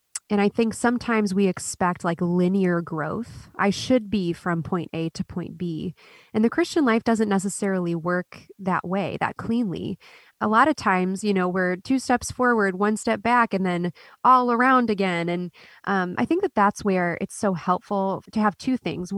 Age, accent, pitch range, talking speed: 20-39, American, 180-220 Hz, 190 wpm